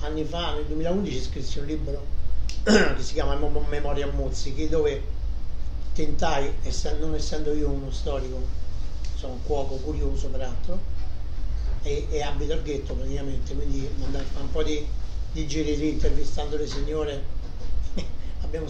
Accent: native